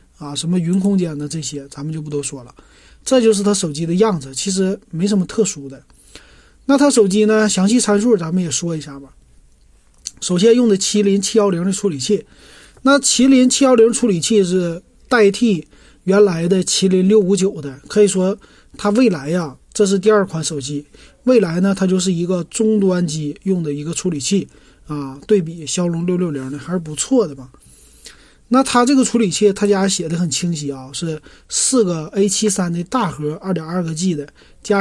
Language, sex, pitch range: Chinese, male, 165-210 Hz